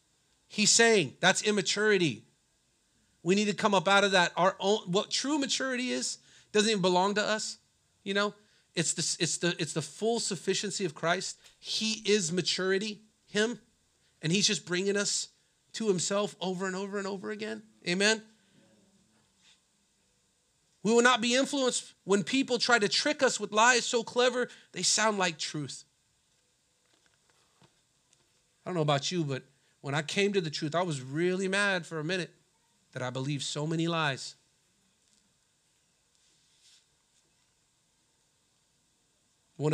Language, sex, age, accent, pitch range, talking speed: English, male, 40-59, American, 145-205 Hz, 150 wpm